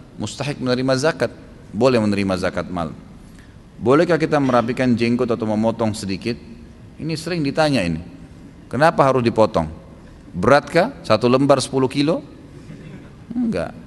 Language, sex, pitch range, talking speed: Indonesian, male, 110-140 Hz, 115 wpm